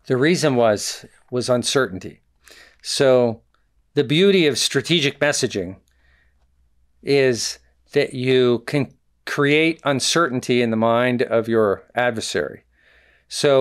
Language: Czech